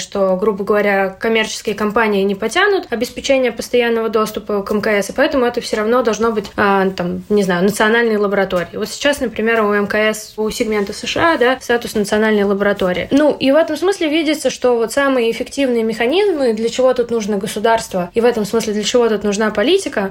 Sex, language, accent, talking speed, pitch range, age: female, Russian, native, 185 wpm, 215-255 Hz, 20-39